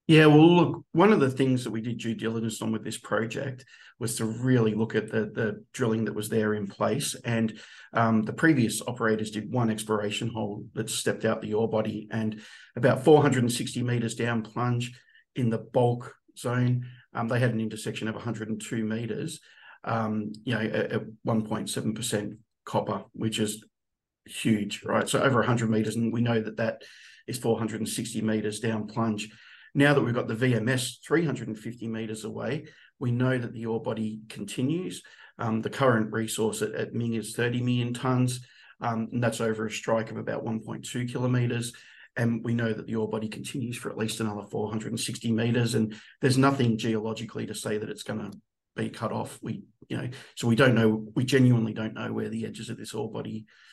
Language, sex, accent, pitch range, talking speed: English, male, Australian, 110-125 Hz, 190 wpm